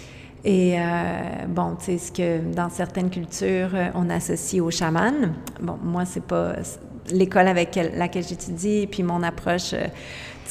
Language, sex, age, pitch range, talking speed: French, female, 30-49, 180-215 Hz, 170 wpm